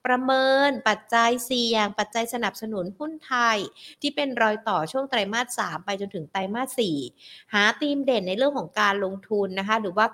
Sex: female